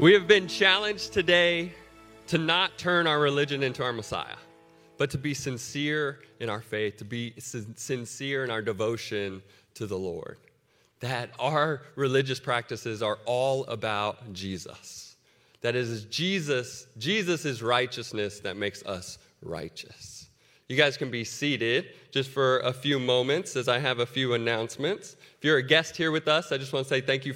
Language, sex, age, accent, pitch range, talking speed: English, male, 30-49, American, 110-140 Hz, 170 wpm